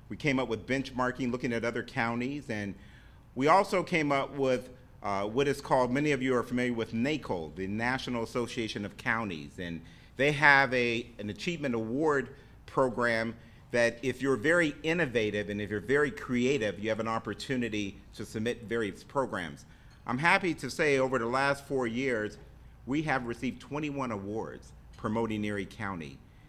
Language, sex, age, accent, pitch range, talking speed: English, male, 50-69, American, 110-140 Hz, 170 wpm